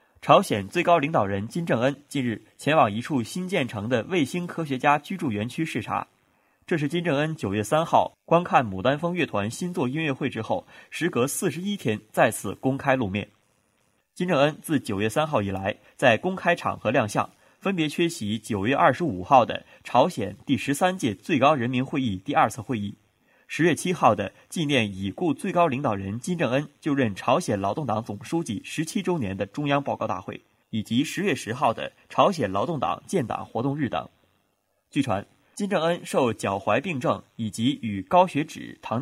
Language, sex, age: Chinese, male, 20-39